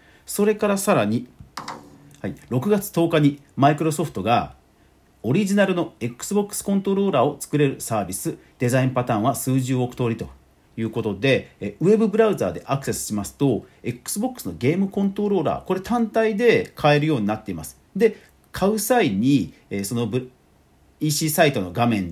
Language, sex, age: Japanese, male, 40-59